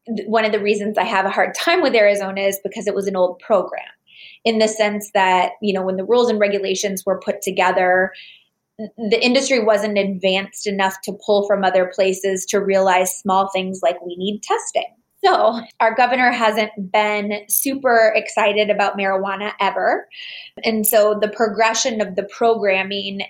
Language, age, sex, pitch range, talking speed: English, 20-39, female, 190-220 Hz, 175 wpm